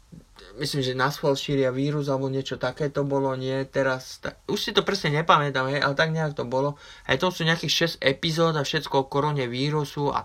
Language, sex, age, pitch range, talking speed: Slovak, male, 20-39, 125-150 Hz, 210 wpm